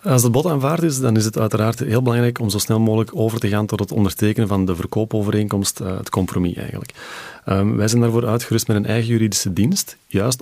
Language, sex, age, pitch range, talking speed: Dutch, male, 40-59, 95-110 Hz, 220 wpm